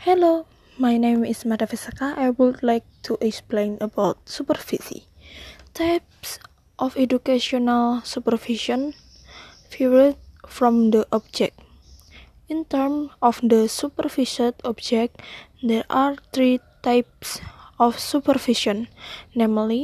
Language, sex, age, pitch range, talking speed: Indonesian, female, 20-39, 235-275 Hz, 100 wpm